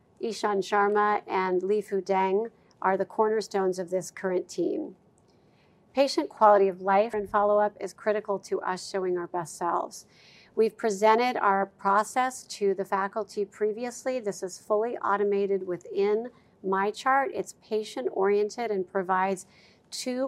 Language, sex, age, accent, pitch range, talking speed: English, female, 50-69, American, 185-220 Hz, 135 wpm